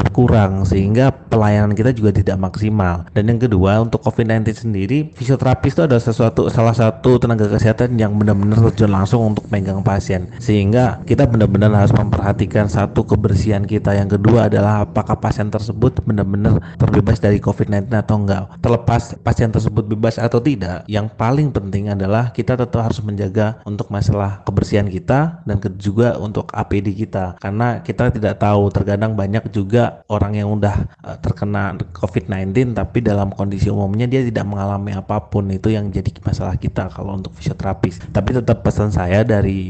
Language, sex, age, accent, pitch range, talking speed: Indonesian, male, 30-49, native, 100-115 Hz, 155 wpm